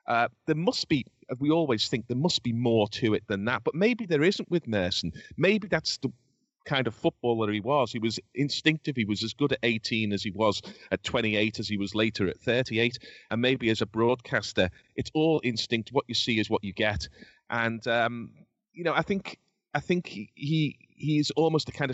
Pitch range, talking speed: 100-130 Hz, 210 wpm